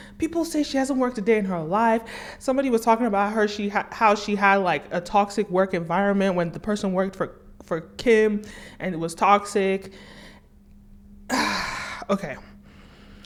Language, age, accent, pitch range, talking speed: English, 20-39, American, 180-225 Hz, 170 wpm